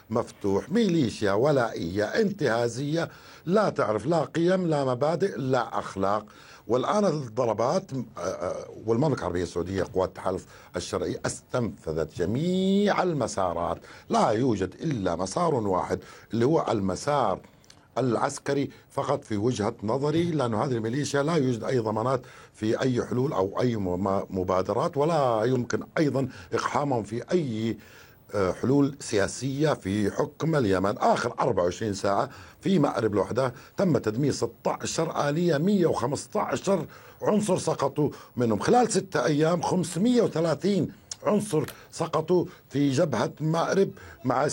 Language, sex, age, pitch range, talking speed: Arabic, male, 60-79, 110-165 Hz, 115 wpm